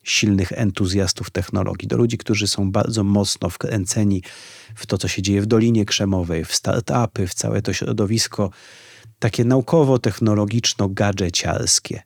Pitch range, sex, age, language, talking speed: 100-130 Hz, male, 30-49, Polish, 130 wpm